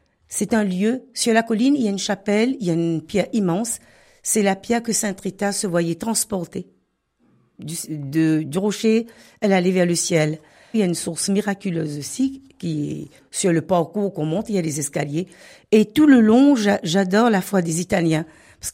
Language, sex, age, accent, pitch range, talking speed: French, female, 50-69, French, 165-210 Hz, 210 wpm